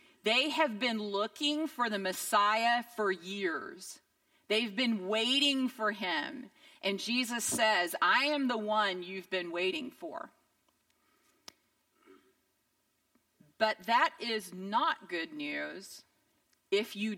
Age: 40-59